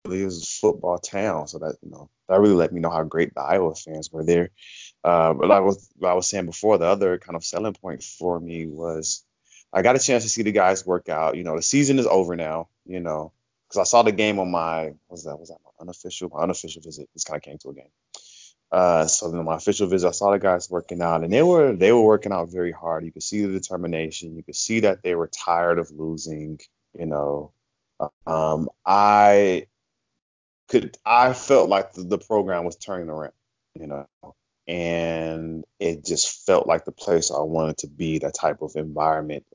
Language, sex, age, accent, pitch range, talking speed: English, male, 20-39, American, 80-95 Hz, 220 wpm